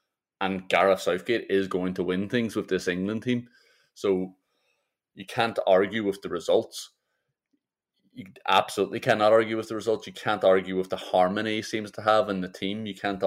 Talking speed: 185 wpm